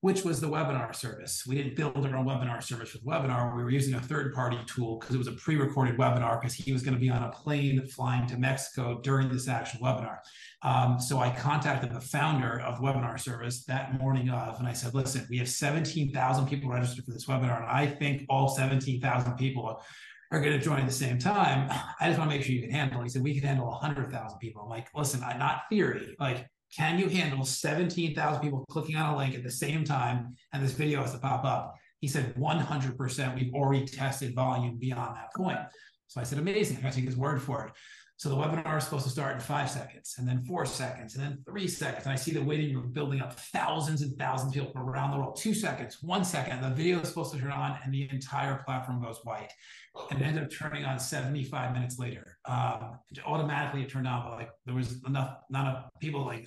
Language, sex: English, male